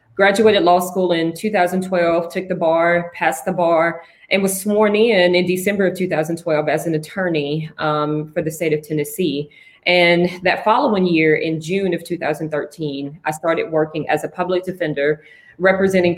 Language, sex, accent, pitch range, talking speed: English, female, American, 155-180 Hz, 165 wpm